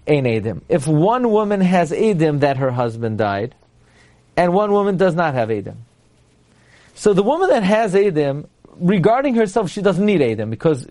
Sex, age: male, 40-59